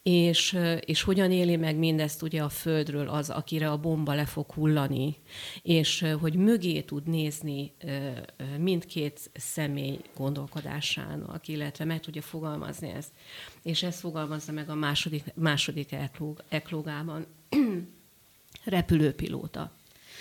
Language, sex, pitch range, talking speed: Hungarian, female, 150-175 Hz, 115 wpm